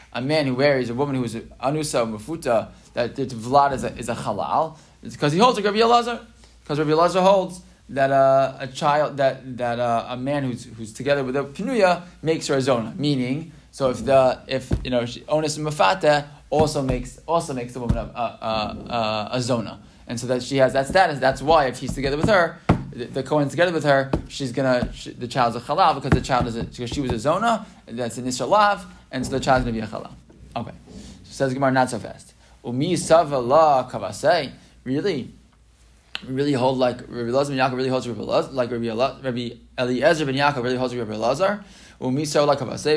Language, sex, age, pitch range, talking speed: English, male, 20-39, 125-155 Hz, 210 wpm